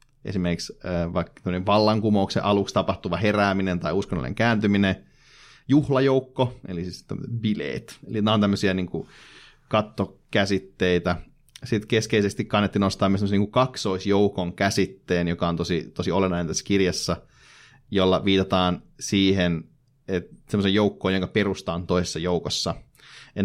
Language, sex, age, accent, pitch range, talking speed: Finnish, male, 30-49, native, 90-110 Hz, 115 wpm